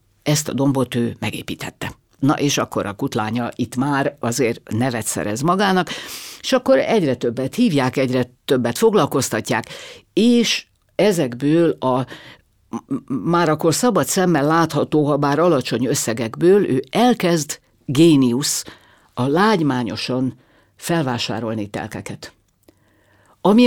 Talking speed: 110 wpm